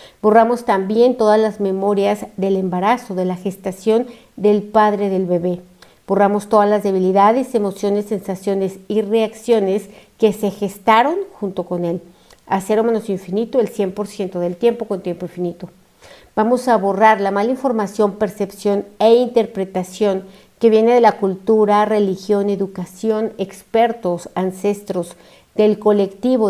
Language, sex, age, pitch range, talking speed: Spanish, female, 50-69, 190-225 Hz, 130 wpm